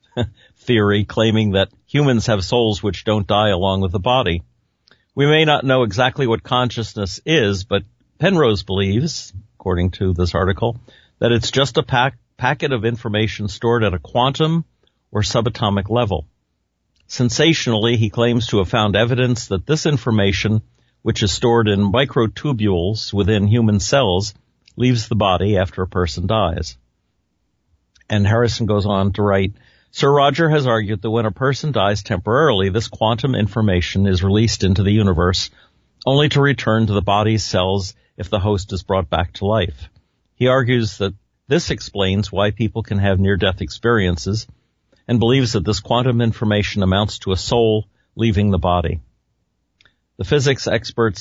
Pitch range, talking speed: 95-120 Hz, 155 wpm